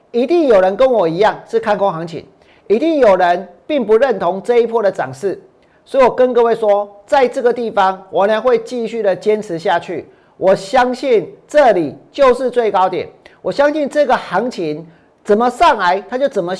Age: 40-59